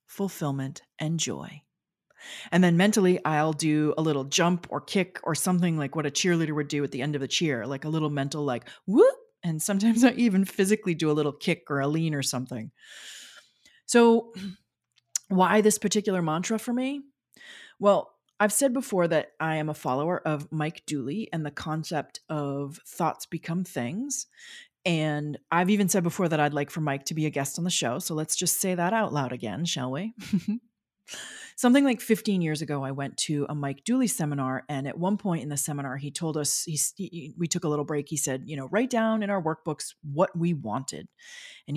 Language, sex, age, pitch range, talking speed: English, female, 30-49, 145-195 Hz, 205 wpm